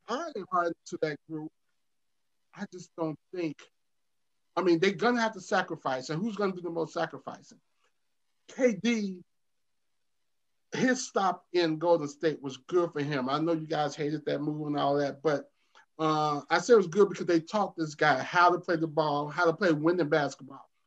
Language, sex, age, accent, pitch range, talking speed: English, male, 30-49, American, 155-190 Hz, 180 wpm